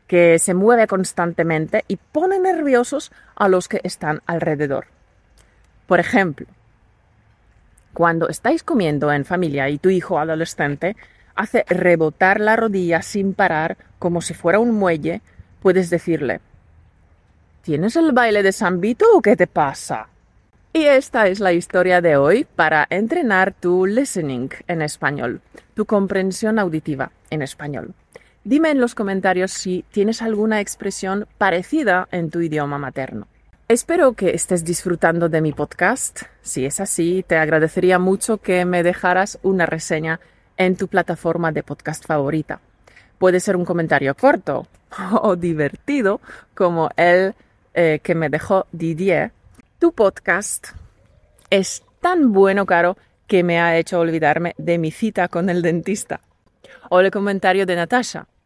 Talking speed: 140 wpm